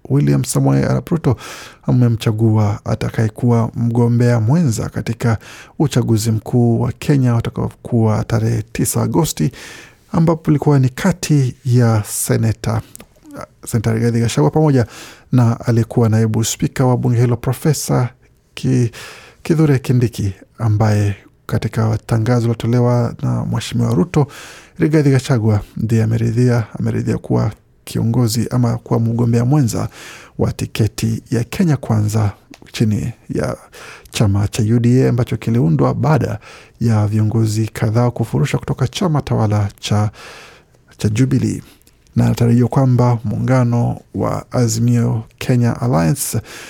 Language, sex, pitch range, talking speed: Swahili, male, 110-125 Hz, 115 wpm